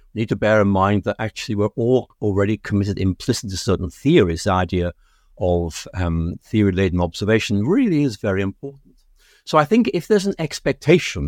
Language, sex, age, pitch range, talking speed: English, male, 60-79, 100-140 Hz, 170 wpm